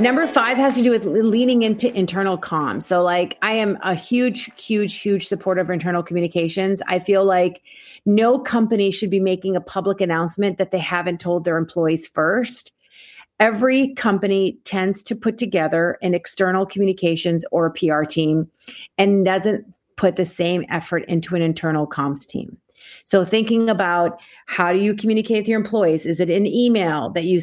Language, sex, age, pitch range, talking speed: English, female, 30-49, 175-225 Hz, 175 wpm